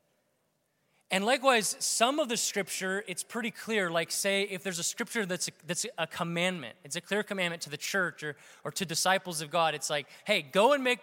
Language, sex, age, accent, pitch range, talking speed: English, male, 20-39, American, 175-225 Hz, 210 wpm